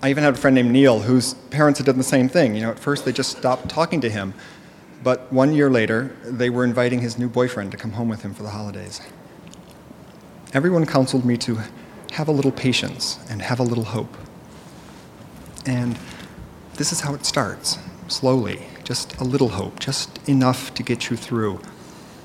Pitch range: 115-140 Hz